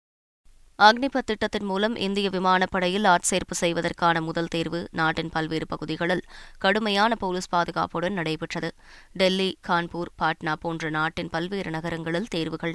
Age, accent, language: 20-39, native, Tamil